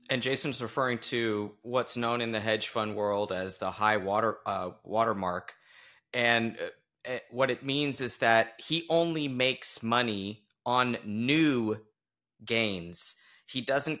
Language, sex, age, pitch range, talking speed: English, male, 30-49, 110-130 Hz, 140 wpm